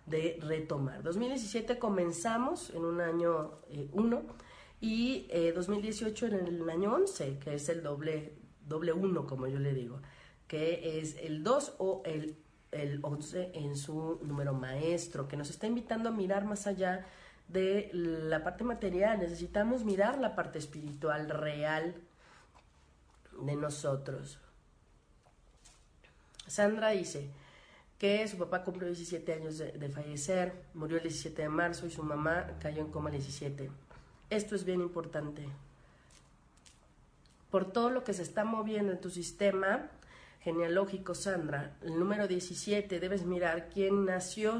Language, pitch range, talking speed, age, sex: Spanish, 150-195 Hz, 140 wpm, 40-59, female